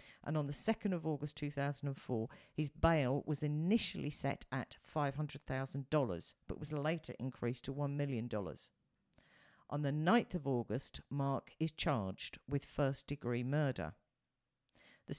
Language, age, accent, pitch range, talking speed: English, 50-69, British, 135-165 Hz, 135 wpm